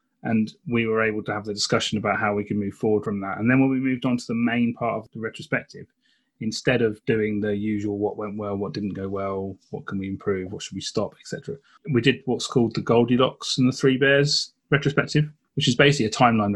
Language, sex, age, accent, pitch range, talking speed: English, male, 30-49, British, 105-125 Hz, 245 wpm